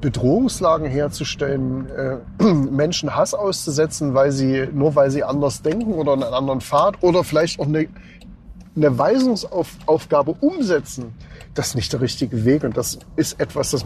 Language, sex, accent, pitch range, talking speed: German, male, German, 135-175 Hz, 150 wpm